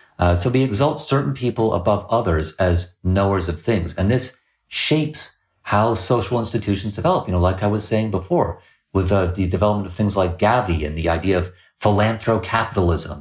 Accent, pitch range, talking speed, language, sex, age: American, 90-120 Hz, 175 wpm, English, male, 40-59